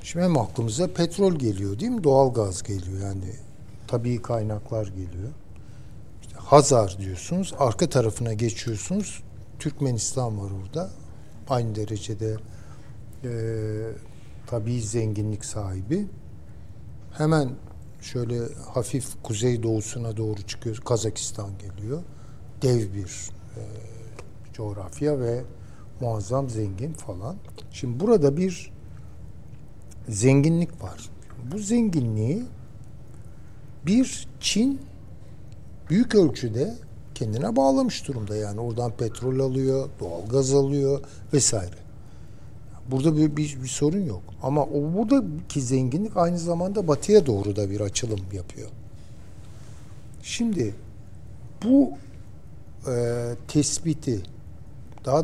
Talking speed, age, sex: 100 wpm, 60-79, male